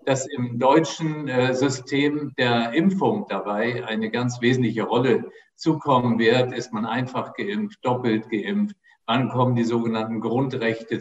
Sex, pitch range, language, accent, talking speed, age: male, 125-150 Hz, German, German, 130 wpm, 50-69